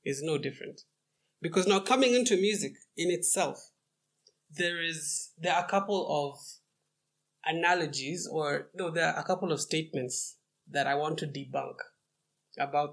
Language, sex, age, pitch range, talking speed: English, male, 20-39, 130-160 Hz, 150 wpm